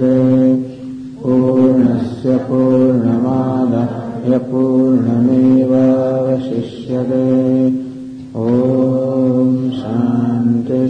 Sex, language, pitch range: male, English, 125-130 Hz